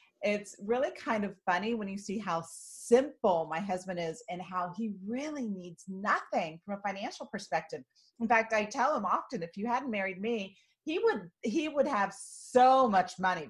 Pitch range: 170-230 Hz